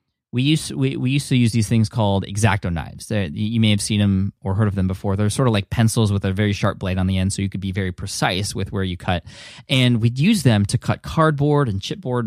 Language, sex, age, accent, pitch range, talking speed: English, male, 20-39, American, 100-125 Hz, 275 wpm